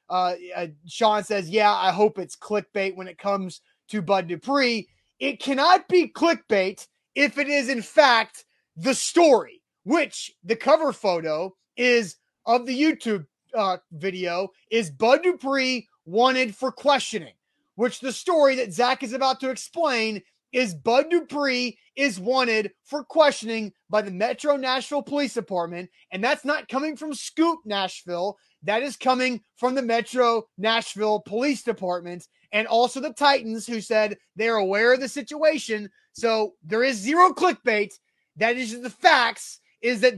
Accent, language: American, English